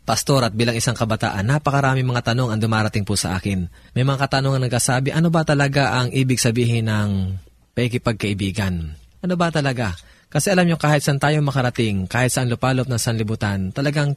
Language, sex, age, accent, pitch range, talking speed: Filipino, male, 20-39, native, 110-140 Hz, 180 wpm